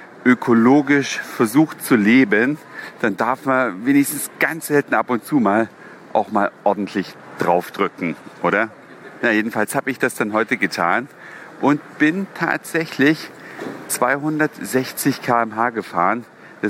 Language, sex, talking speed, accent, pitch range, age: German, male, 120 wpm, German, 105-135 Hz, 40-59